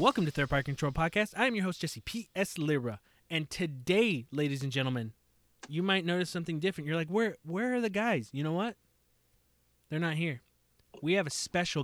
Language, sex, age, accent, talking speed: English, male, 20-39, American, 205 wpm